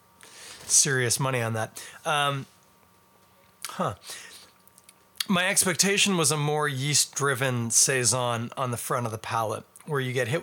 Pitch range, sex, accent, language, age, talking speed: 95-165 Hz, male, American, English, 30-49, 130 wpm